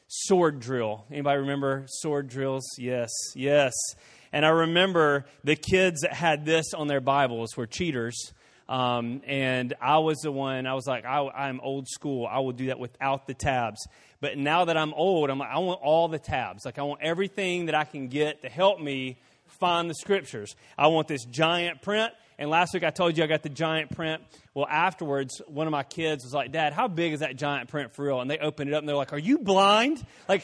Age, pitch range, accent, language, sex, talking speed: 30-49, 135-180 Hz, American, English, male, 220 wpm